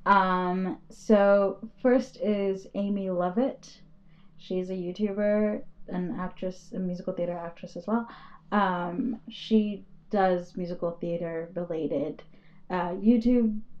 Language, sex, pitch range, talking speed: English, female, 180-220 Hz, 110 wpm